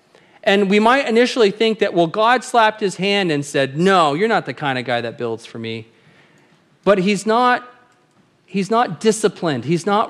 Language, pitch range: English, 145-185 Hz